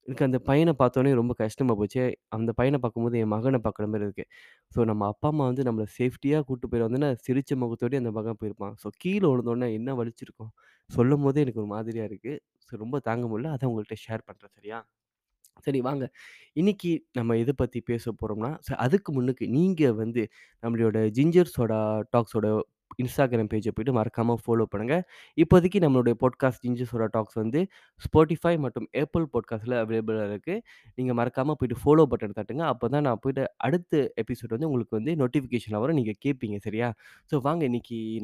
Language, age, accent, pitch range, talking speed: Tamil, 20-39, native, 110-145 Hz, 165 wpm